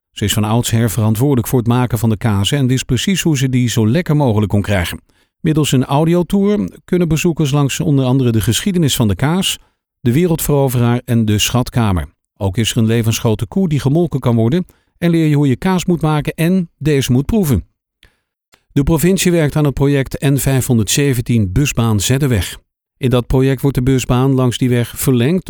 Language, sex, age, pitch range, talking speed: Dutch, male, 50-69, 115-150 Hz, 190 wpm